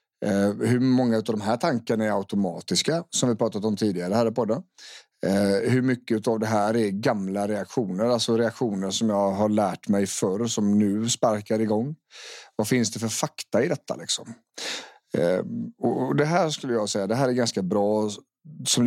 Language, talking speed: English, 180 wpm